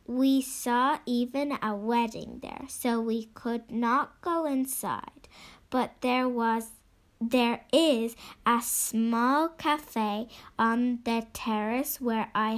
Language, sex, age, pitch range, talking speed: English, female, 10-29, 225-270 Hz, 120 wpm